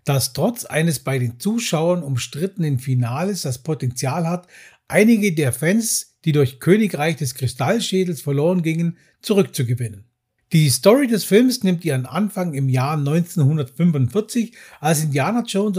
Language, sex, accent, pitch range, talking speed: German, male, German, 135-195 Hz, 135 wpm